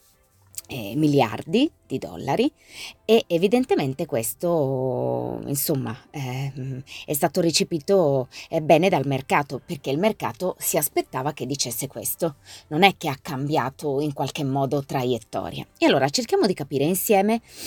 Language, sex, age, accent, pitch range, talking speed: Italian, female, 20-39, native, 135-205 Hz, 120 wpm